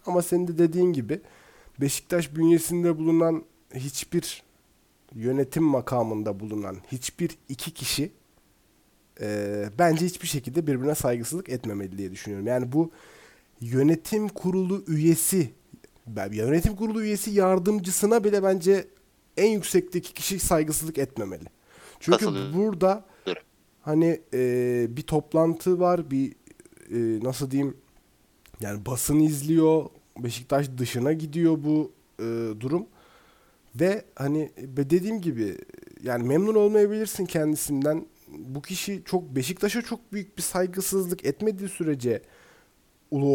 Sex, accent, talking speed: male, native, 110 wpm